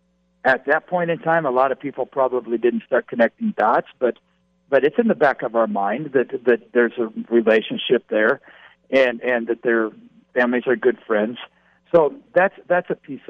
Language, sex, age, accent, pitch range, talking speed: English, male, 60-79, American, 110-140 Hz, 190 wpm